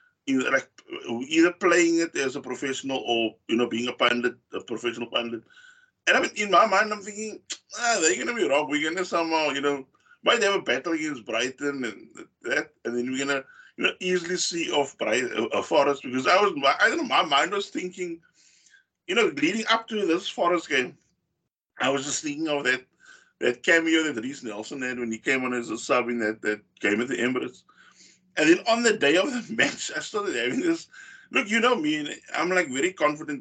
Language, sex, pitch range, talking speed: English, male, 140-230 Hz, 220 wpm